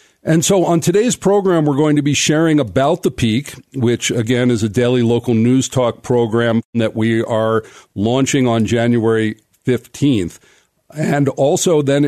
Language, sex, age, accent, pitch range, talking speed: English, male, 50-69, American, 115-145 Hz, 160 wpm